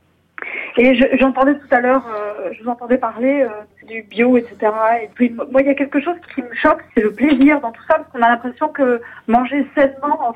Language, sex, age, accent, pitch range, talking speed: French, female, 40-59, French, 240-295 Hz, 230 wpm